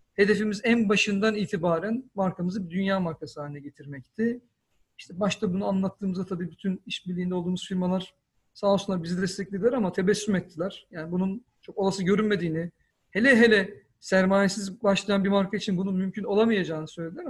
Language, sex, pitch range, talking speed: Turkish, male, 180-210 Hz, 145 wpm